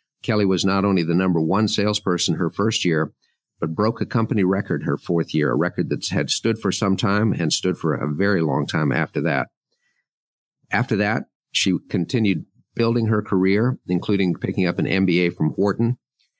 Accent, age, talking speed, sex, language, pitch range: American, 50-69, 185 wpm, male, English, 90-105 Hz